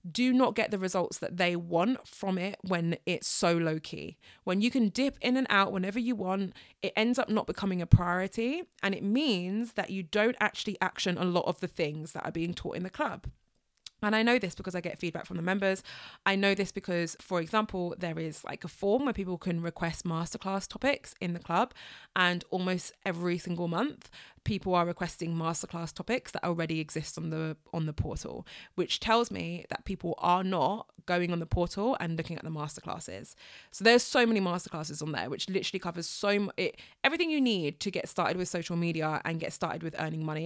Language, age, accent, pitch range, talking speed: English, 20-39, British, 170-215 Hz, 215 wpm